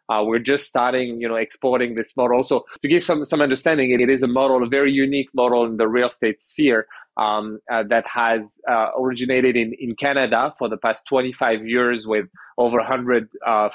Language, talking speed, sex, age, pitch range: English, 205 wpm, male, 30-49, 115-140 Hz